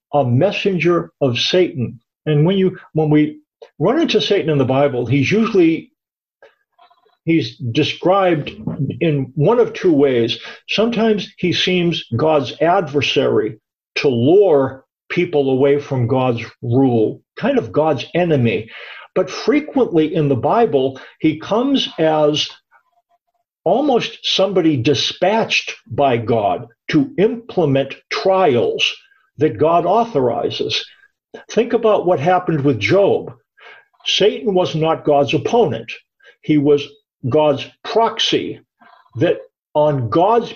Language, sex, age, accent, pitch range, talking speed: English, male, 50-69, American, 140-215 Hz, 115 wpm